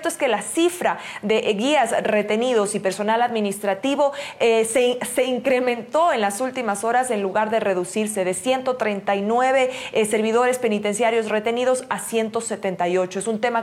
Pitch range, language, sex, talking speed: 195-230 Hz, Spanish, female, 145 wpm